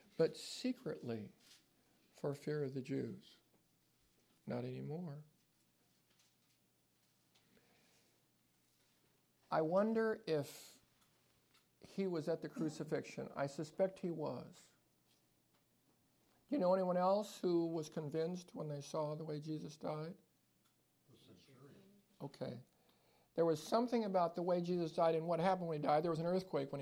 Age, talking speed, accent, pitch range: 60-79, 125 wpm, American, 150-195 Hz